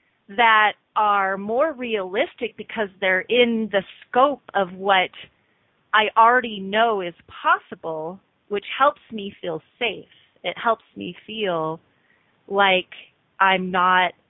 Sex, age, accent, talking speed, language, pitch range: female, 30-49, American, 120 wpm, English, 195-265 Hz